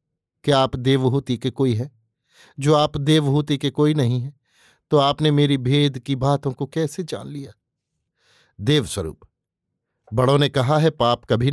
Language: Hindi